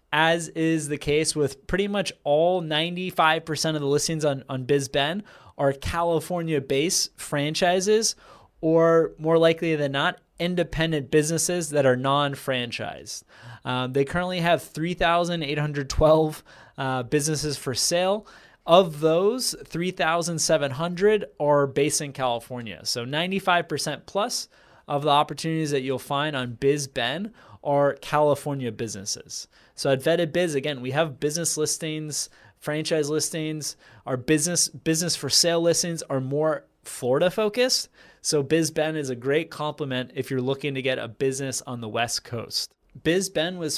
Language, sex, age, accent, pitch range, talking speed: English, male, 20-39, American, 135-165 Hz, 130 wpm